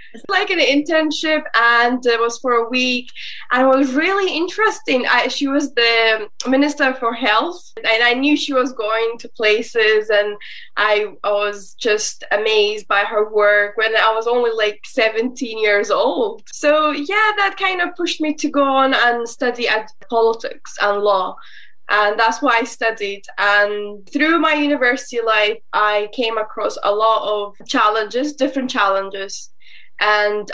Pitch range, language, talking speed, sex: 220-285 Hz, English, 165 wpm, female